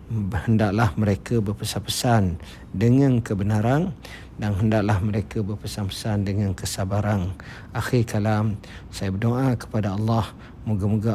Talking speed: 95 wpm